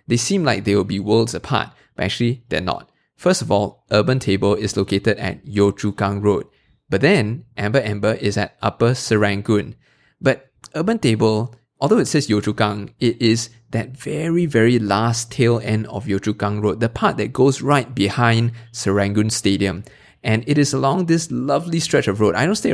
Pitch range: 105-135 Hz